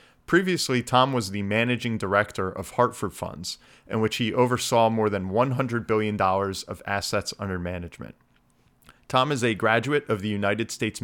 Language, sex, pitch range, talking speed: English, male, 100-120 Hz, 160 wpm